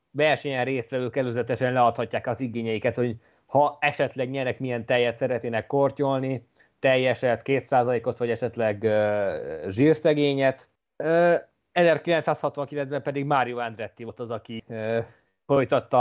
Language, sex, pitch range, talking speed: Hungarian, male, 120-140 Hz, 110 wpm